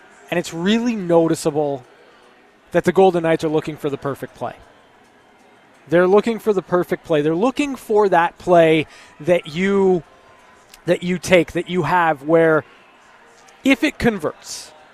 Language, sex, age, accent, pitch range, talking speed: English, male, 20-39, American, 160-205 Hz, 150 wpm